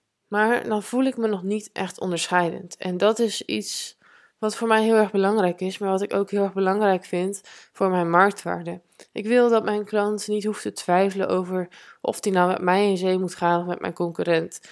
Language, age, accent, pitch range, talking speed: Dutch, 20-39, Dutch, 180-210 Hz, 220 wpm